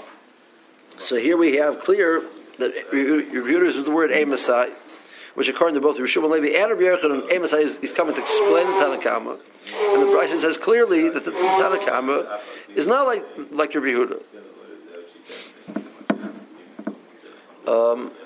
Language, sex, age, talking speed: English, male, 60-79, 145 wpm